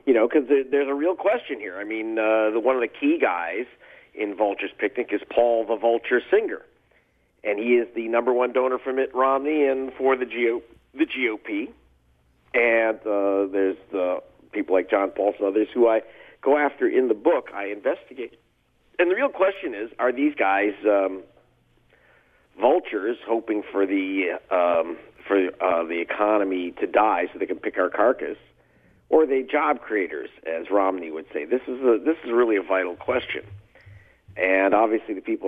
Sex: male